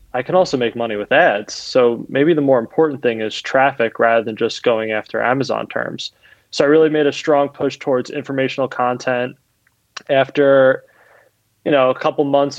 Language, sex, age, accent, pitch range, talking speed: English, male, 20-39, American, 120-140 Hz, 180 wpm